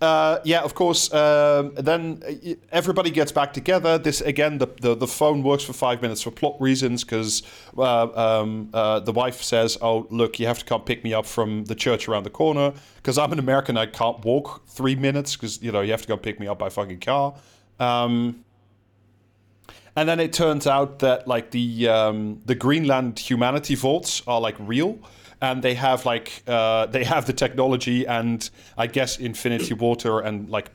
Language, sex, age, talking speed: English, male, 30-49, 195 wpm